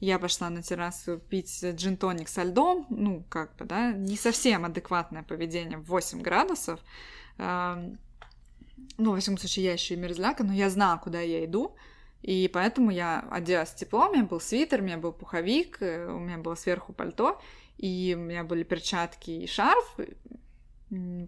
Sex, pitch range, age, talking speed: female, 175-230 Hz, 20-39, 165 wpm